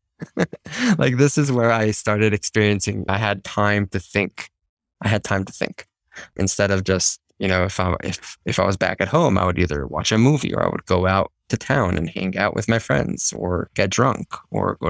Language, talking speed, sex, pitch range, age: English, 220 wpm, male, 90-105 Hz, 20-39